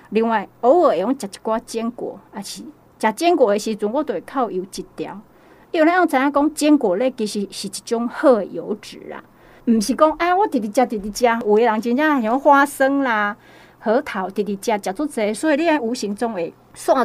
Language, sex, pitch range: Chinese, female, 205-285 Hz